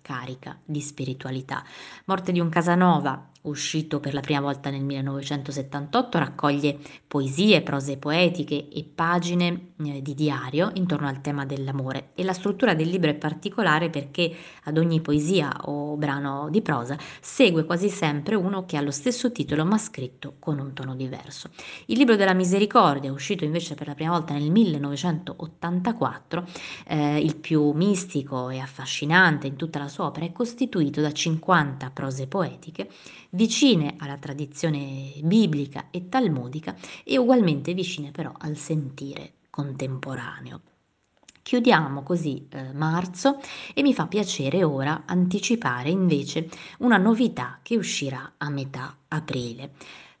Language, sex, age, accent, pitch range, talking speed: Italian, female, 20-39, native, 140-180 Hz, 140 wpm